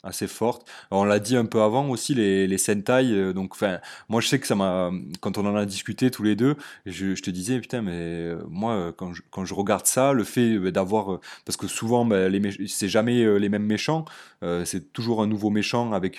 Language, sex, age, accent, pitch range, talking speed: French, male, 20-39, French, 90-110 Hz, 225 wpm